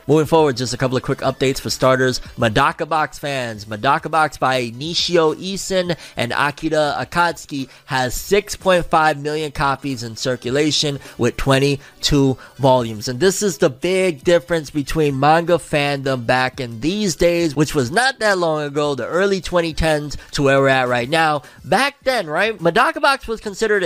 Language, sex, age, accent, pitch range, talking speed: English, male, 20-39, American, 130-175 Hz, 165 wpm